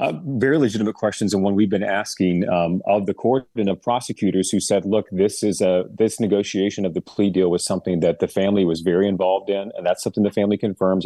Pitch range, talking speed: 90-105 Hz, 240 wpm